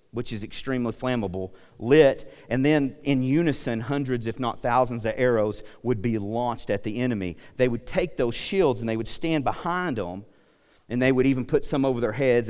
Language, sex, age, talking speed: English, male, 40-59, 195 wpm